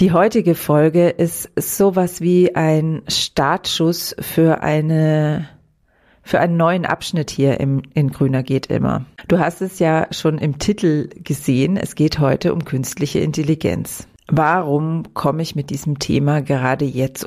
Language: German